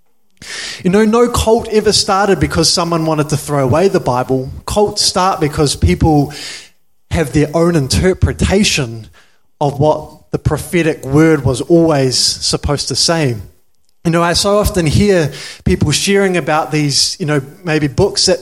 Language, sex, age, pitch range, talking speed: English, male, 20-39, 140-190 Hz, 155 wpm